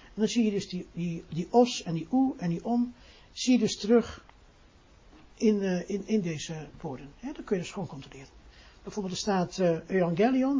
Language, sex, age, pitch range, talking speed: Dutch, male, 60-79, 170-235 Hz, 210 wpm